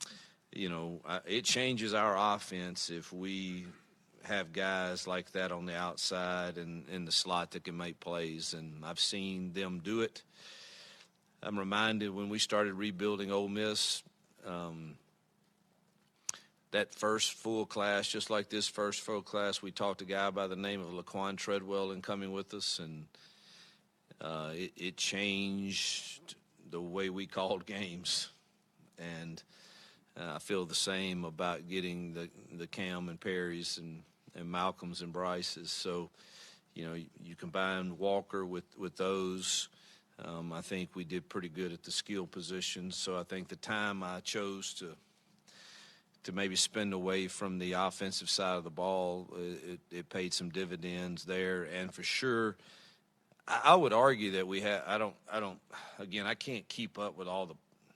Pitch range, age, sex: 90-100 Hz, 50-69, male